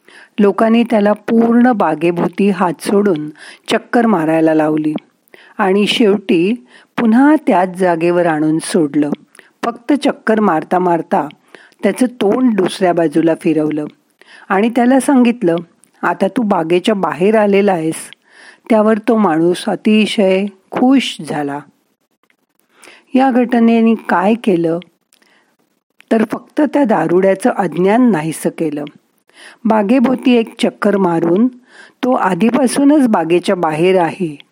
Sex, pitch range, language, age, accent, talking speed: female, 175-235 Hz, Marathi, 40-59, native, 105 wpm